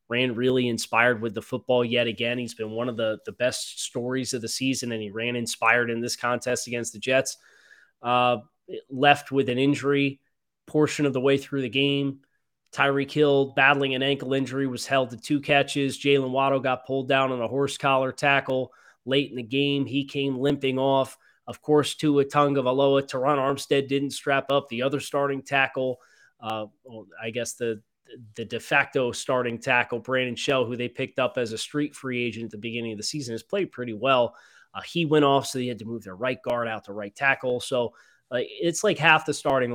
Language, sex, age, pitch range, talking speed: English, male, 20-39, 115-140 Hz, 210 wpm